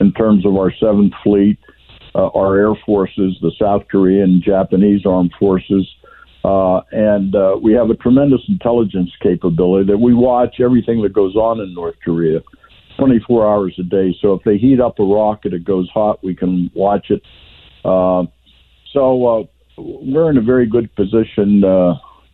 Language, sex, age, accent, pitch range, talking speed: English, male, 60-79, American, 95-110 Hz, 170 wpm